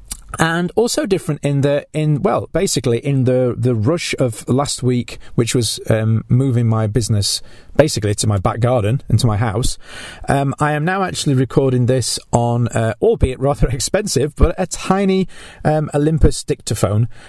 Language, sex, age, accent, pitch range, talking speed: English, male, 40-59, British, 115-150 Hz, 165 wpm